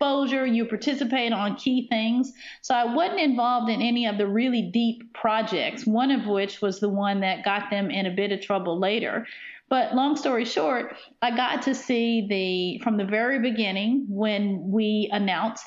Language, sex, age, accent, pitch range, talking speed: English, female, 40-59, American, 195-235 Hz, 185 wpm